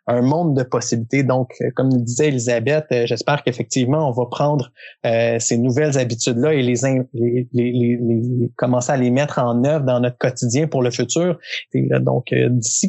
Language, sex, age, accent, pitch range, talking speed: French, male, 20-39, Canadian, 120-150 Hz, 190 wpm